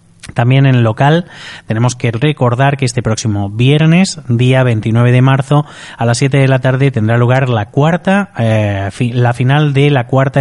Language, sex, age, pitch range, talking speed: Spanish, male, 30-49, 115-140 Hz, 180 wpm